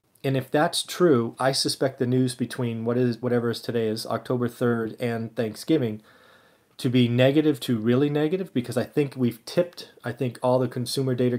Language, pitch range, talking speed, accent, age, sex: English, 115-130 Hz, 190 wpm, American, 30-49, male